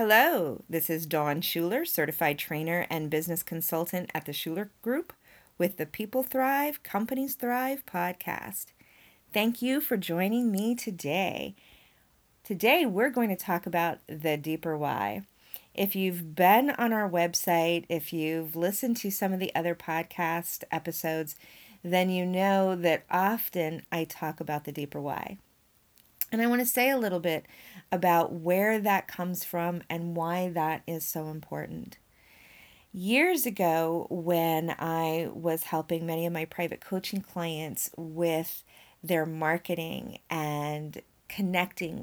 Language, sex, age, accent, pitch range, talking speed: English, female, 40-59, American, 160-195 Hz, 140 wpm